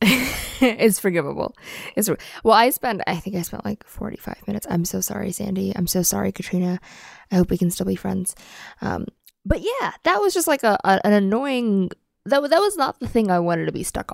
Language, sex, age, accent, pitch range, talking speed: English, female, 20-39, American, 180-230 Hz, 200 wpm